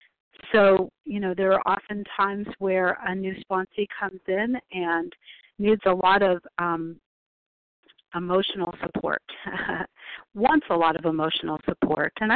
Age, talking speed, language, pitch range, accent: 50-69, 135 wpm, English, 175-205 Hz, American